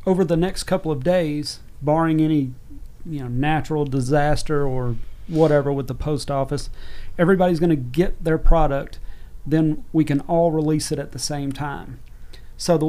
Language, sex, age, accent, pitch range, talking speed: English, male, 40-59, American, 130-165 Hz, 170 wpm